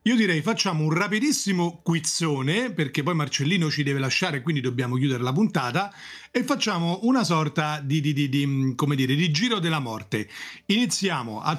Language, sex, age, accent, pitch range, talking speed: Italian, male, 40-59, native, 135-185 Hz, 170 wpm